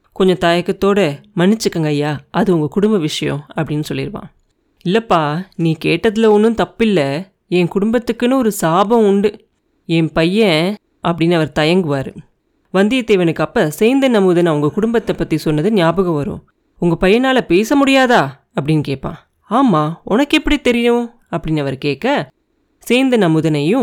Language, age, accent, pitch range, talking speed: Tamil, 30-49, native, 165-230 Hz, 120 wpm